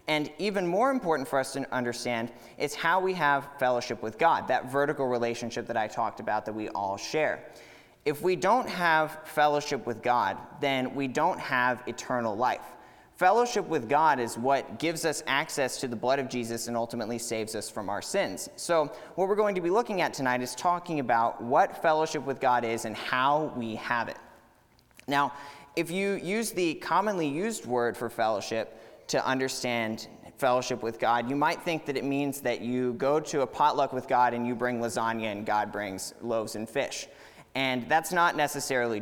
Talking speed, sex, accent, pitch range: 190 wpm, male, American, 120-160 Hz